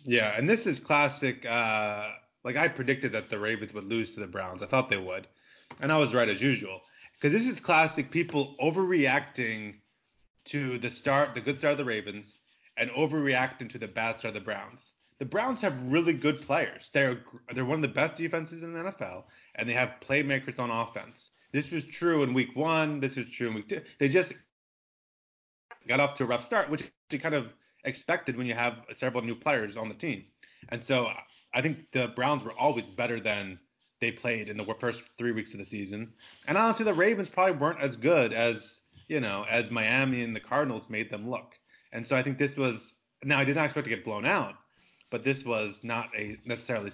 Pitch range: 115-145 Hz